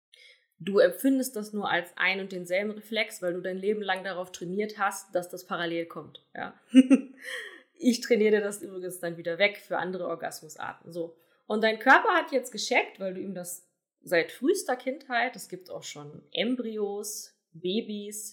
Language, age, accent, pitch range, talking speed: German, 20-39, German, 180-225 Hz, 170 wpm